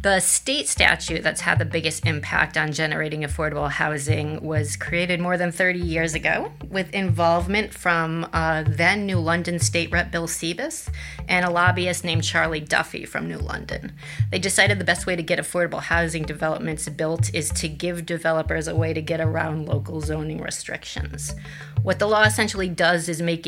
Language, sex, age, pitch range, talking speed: English, female, 30-49, 155-190 Hz, 175 wpm